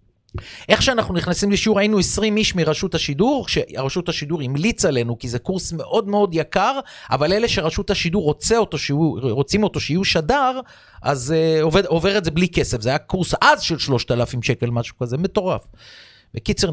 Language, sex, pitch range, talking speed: Hebrew, male, 135-215 Hz, 175 wpm